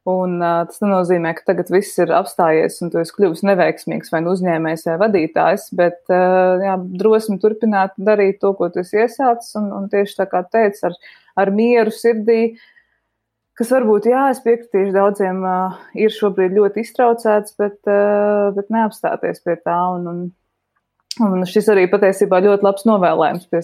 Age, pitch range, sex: 20-39, 175-215 Hz, female